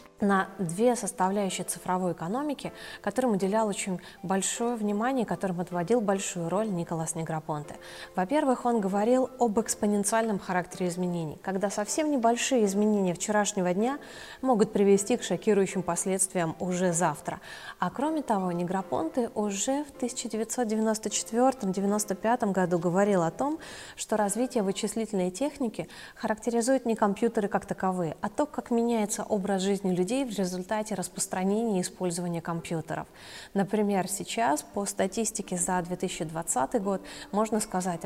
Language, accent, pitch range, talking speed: Russian, native, 180-225 Hz, 120 wpm